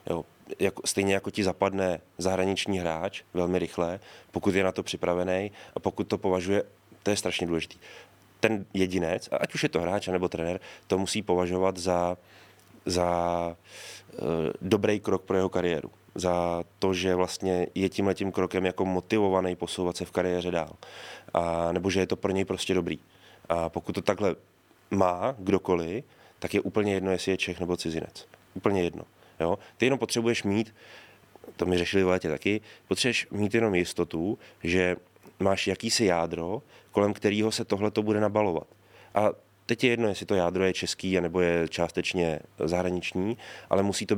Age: 20-39